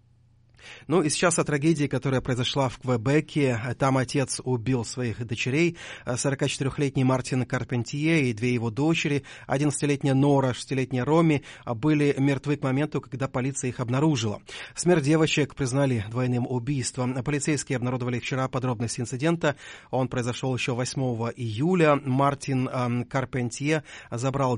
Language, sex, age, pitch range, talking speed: English, male, 30-49, 125-145 Hz, 125 wpm